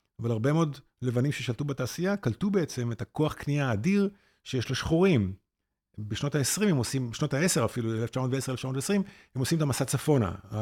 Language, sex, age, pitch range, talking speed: Hebrew, male, 50-69, 110-145 Hz, 145 wpm